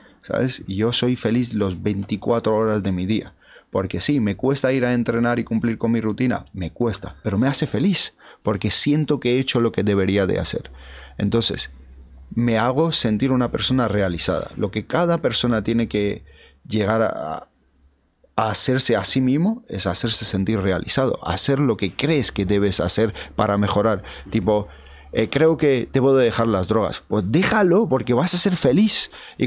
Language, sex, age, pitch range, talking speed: Spanish, male, 30-49, 95-130 Hz, 175 wpm